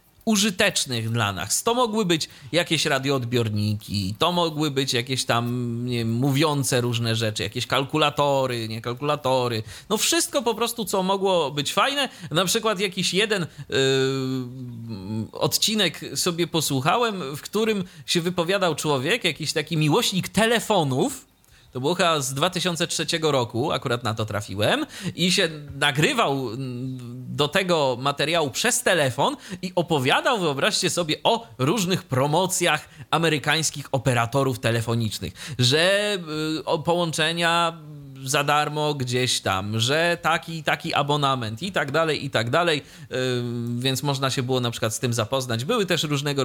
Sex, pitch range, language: male, 125-180 Hz, Polish